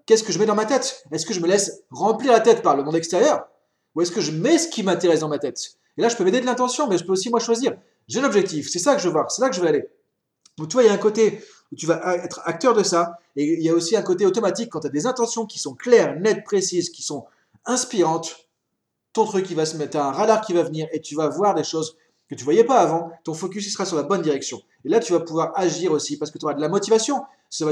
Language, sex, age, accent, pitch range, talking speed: French, male, 30-49, French, 160-235 Hz, 305 wpm